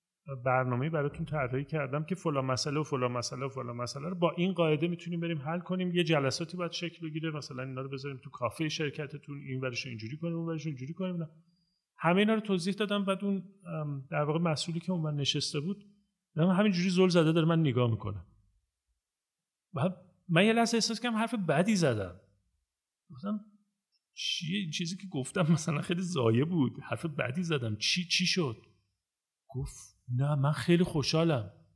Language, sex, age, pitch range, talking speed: Persian, male, 40-59, 135-180 Hz, 165 wpm